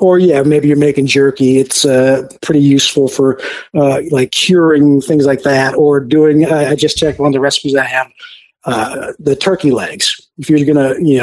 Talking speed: 205 wpm